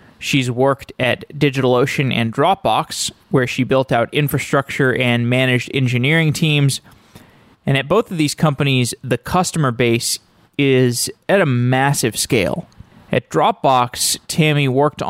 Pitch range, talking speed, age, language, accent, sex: 125-155 Hz, 130 wpm, 20-39, English, American, male